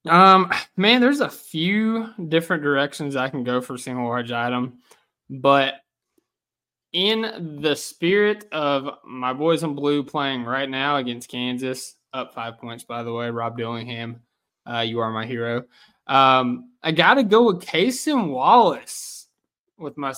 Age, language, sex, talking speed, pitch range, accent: 20-39, English, male, 150 wpm, 130-165 Hz, American